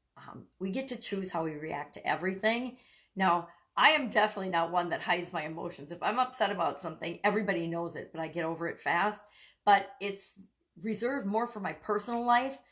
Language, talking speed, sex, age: English, 200 wpm, female, 50-69